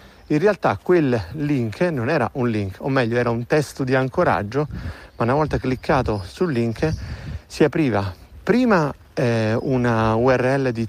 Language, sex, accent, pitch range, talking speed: Italian, male, native, 115-175 Hz, 155 wpm